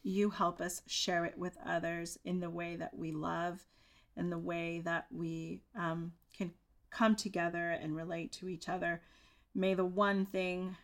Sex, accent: female, American